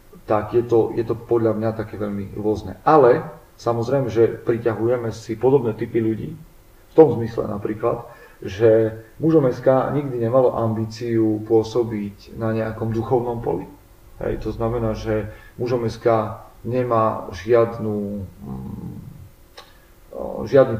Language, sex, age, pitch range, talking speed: Slovak, male, 40-59, 110-120 Hz, 120 wpm